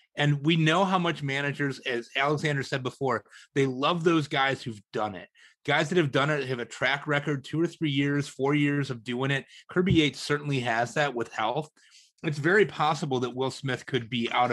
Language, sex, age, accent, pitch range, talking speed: English, male, 30-49, American, 125-150 Hz, 210 wpm